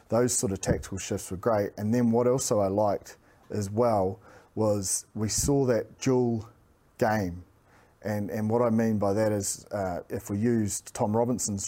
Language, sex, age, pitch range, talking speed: English, male, 30-49, 100-120 Hz, 180 wpm